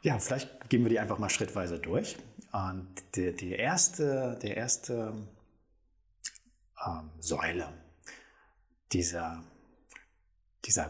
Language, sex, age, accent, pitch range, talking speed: German, male, 30-49, German, 105-130 Hz, 100 wpm